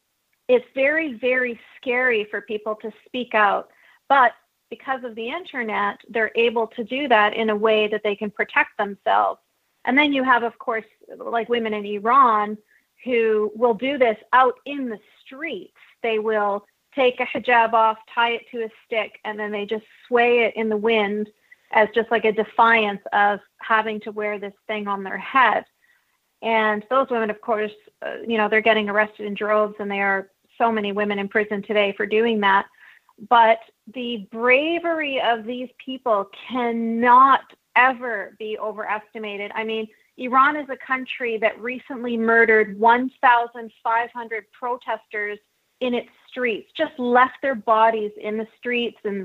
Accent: American